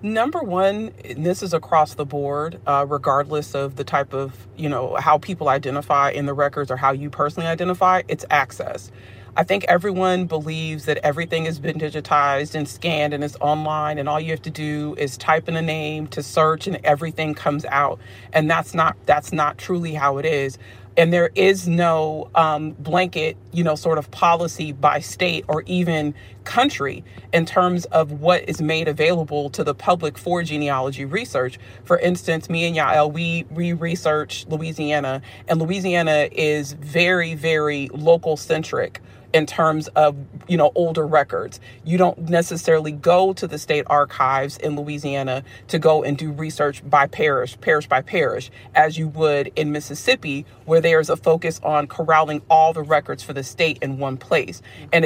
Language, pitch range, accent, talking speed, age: English, 145-170 Hz, American, 175 wpm, 40-59